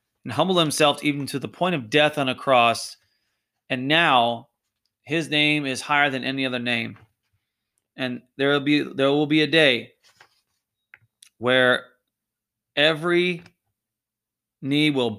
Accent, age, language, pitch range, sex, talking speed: American, 30-49, English, 120-150 Hz, male, 140 wpm